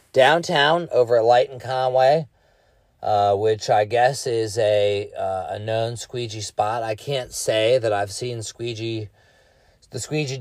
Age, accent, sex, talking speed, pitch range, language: 30-49, American, male, 150 wpm, 100-135 Hz, English